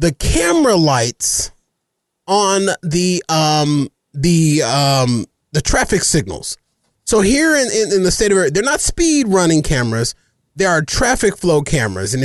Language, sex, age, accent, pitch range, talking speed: English, male, 30-49, American, 145-195 Hz, 150 wpm